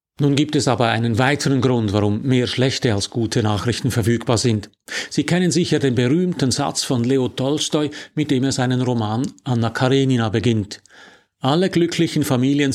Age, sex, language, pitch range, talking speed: 50-69, male, German, 115-150 Hz, 165 wpm